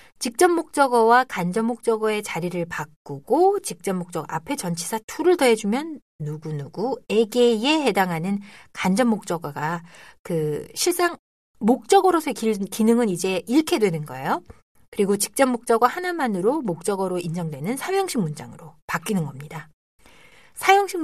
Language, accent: Korean, native